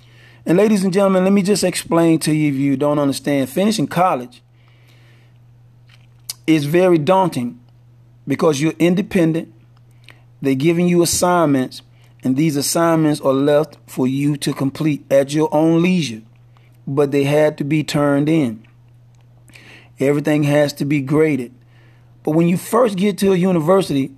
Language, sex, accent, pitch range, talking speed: English, male, American, 120-160 Hz, 145 wpm